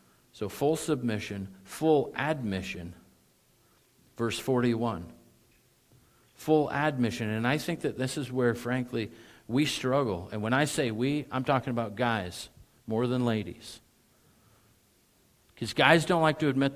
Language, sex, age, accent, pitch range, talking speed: English, male, 50-69, American, 110-150 Hz, 135 wpm